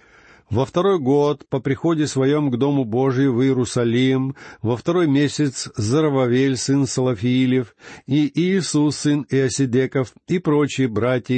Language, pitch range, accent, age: Russian, 125-155 Hz, native, 50-69